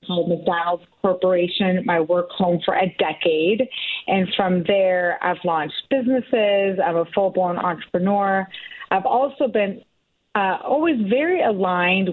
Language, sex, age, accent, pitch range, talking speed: English, female, 30-49, American, 170-205 Hz, 130 wpm